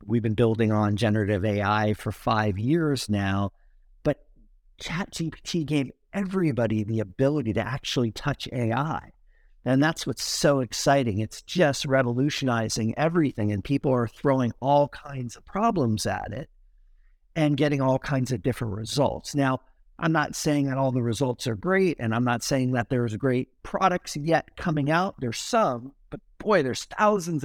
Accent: American